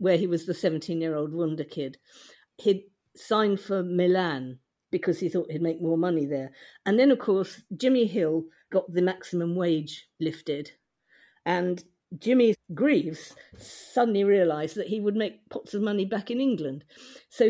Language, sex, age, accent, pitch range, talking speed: English, female, 50-69, British, 175-230 Hz, 160 wpm